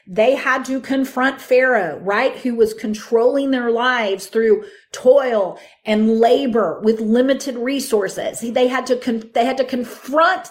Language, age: English, 40-59